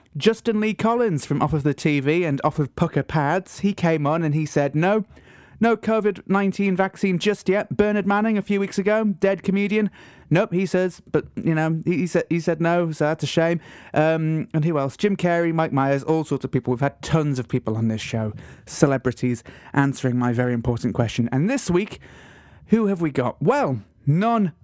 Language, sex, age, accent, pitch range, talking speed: English, male, 30-49, British, 135-185 Hz, 205 wpm